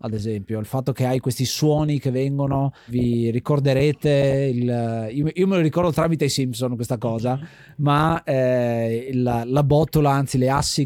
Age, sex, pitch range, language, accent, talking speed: 30-49, male, 125-150 Hz, Italian, native, 170 wpm